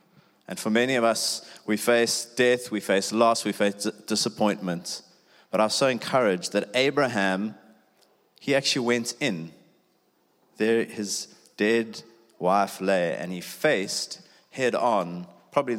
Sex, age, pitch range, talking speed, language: male, 30-49, 100-125 Hz, 135 wpm, English